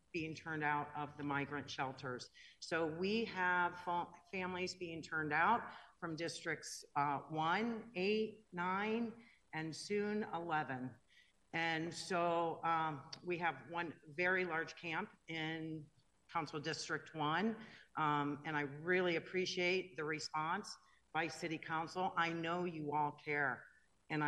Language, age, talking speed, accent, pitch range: English, 50-69, 130 wpm, American, 150-180 Hz